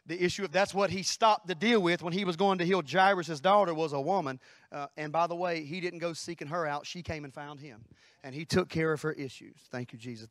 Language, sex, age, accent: English, male, 30-49, American